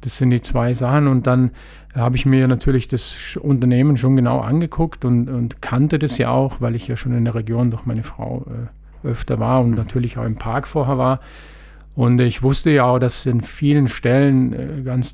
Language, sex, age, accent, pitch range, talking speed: German, male, 50-69, German, 120-135 Hz, 210 wpm